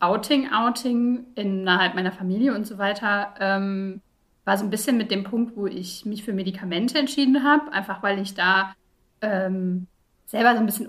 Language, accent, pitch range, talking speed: German, German, 195-240 Hz, 175 wpm